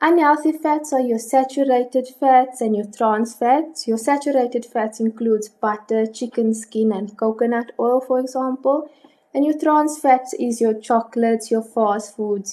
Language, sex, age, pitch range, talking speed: English, female, 20-39, 215-275 Hz, 155 wpm